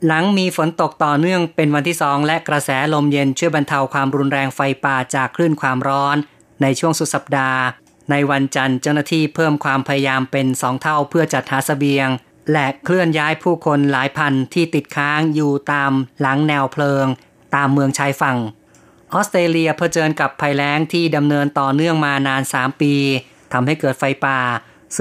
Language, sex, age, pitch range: Thai, female, 20-39, 135-155 Hz